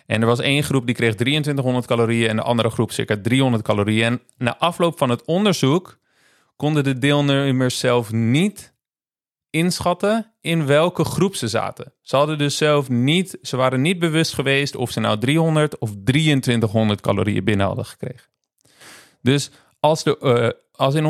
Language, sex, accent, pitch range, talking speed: Dutch, male, Dutch, 120-150 Hz, 170 wpm